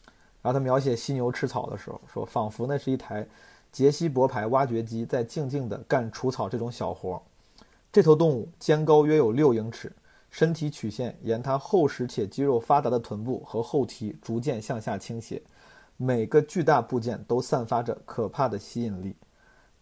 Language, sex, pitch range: Chinese, male, 115-150 Hz